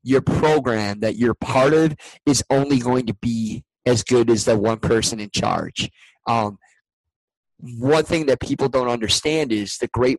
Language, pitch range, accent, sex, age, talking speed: English, 115-130 Hz, American, male, 30-49, 170 wpm